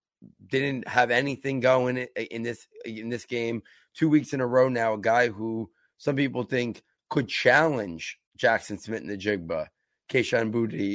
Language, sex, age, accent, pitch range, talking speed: English, male, 30-49, American, 110-130 Hz, 165 wpm